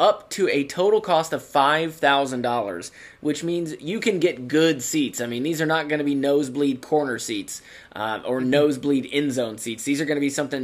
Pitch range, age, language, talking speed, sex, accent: 135-160 Hz, 20-39, English, 220 wpm, male, American